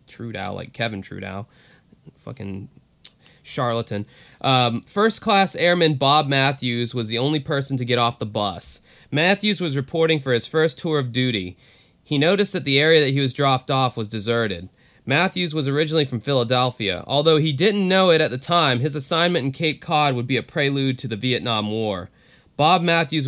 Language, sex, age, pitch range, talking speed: English, male, 20-39, 115-155 Hz, 180 wpm